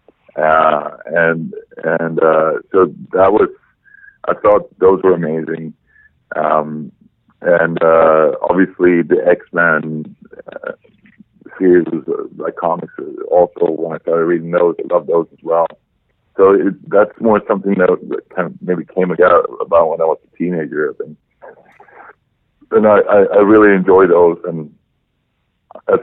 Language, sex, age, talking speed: English, male, 50-69, 140 wpm